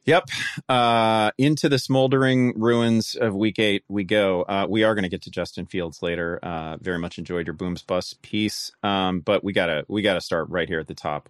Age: 30-49